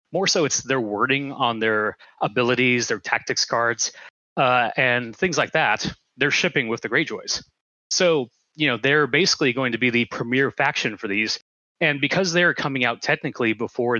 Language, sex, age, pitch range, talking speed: English, male, 30-49, 115-145 Hz, 175 wpm